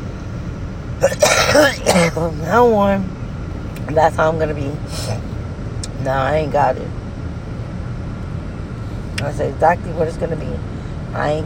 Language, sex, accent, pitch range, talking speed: English, female, American, 100-155 Hz, 120 wpm